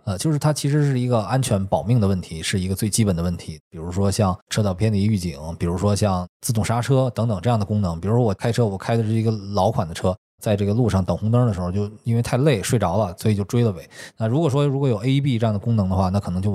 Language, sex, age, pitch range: Chinese, male, 20-39, 95-120 Hz